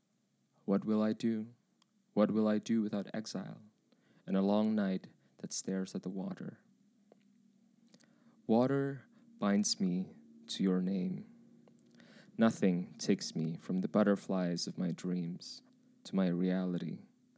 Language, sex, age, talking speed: English, male, 20-39, 130 wpm